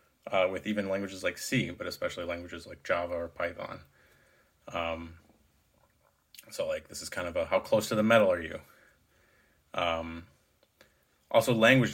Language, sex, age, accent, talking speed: English, male, 30-49, American, 155 wpm